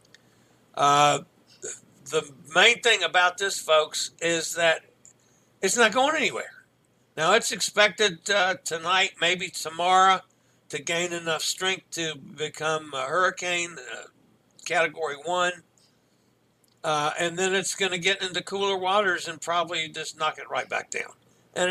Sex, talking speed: male, 140 wpm